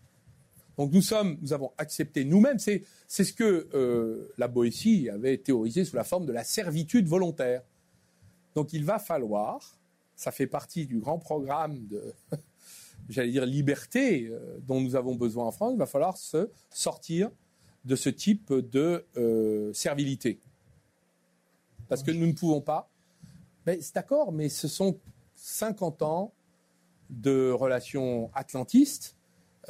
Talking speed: 145 wpm